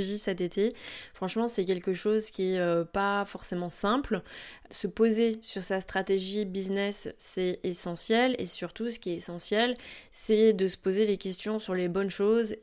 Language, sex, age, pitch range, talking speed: French, female, 20-39, 185-215 Hz, 170 wpm